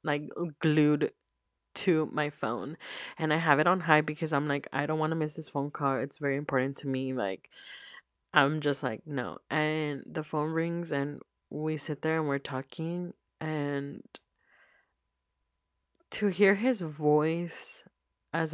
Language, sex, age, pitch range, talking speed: English, female, 20-39, 150-180 Hz, 160 wpm